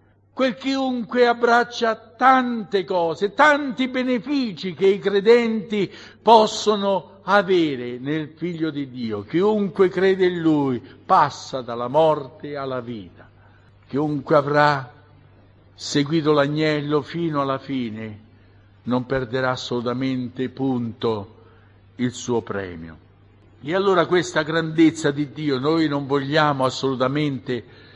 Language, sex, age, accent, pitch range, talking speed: Italian, male, 60-79, native, 120-160 Hz, 105 wpm